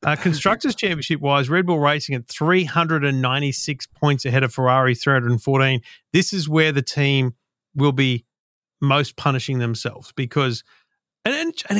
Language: English